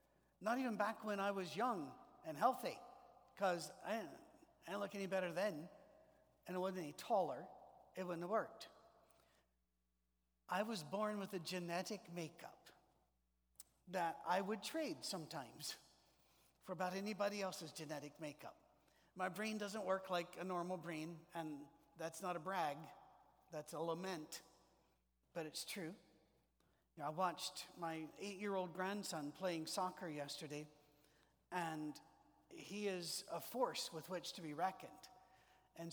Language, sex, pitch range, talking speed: English, male, 160-200 Hz, 135 wpm